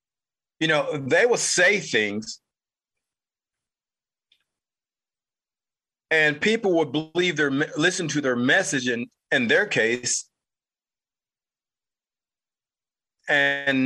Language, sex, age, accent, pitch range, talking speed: English, male, 40-59, American, 135-185 Hz, 85 wpm